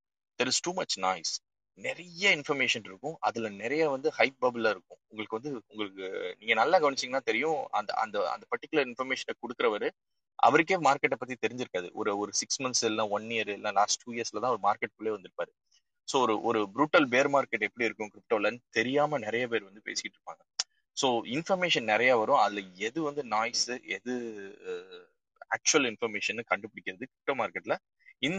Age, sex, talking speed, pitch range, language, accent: 20-39, male, 150 wpm, 110-185 Hz, Tamil, native